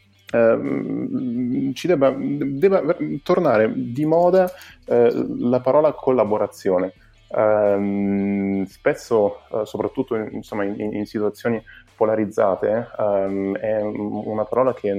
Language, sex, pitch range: Italian, male, 100-110 Hz